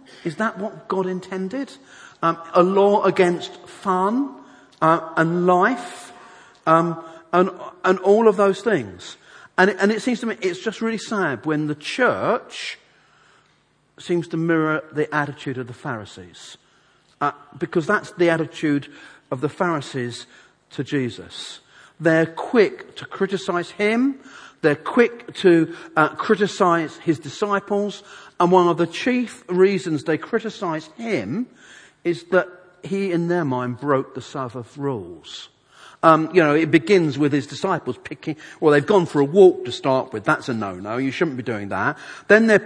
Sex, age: male, 40-59